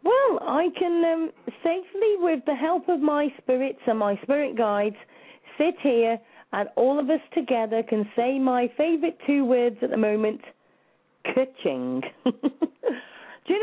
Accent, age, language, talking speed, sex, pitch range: British, 40-59, English, 155 wpm, female, 240-325 Hz